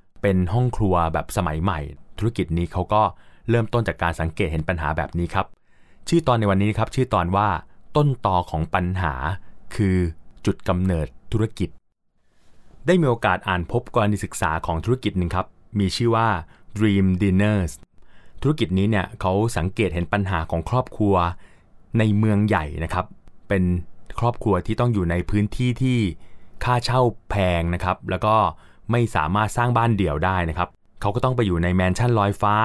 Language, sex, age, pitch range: Thai, male, 20-39, 90-115 Hz